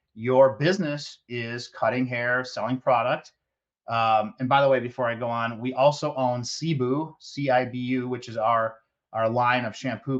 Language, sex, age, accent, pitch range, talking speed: English, male, 30-49, American, 115-140 Hz, 165 wpm